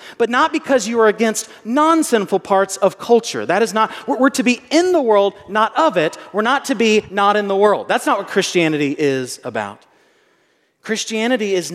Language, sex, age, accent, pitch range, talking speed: English, male, 30-49, American, 165-235 Hz, 195 wpm